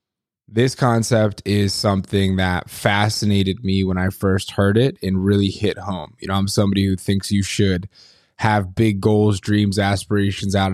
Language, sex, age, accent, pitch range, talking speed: English, male, 20-39, American, 95-110 Hz, 170 wpm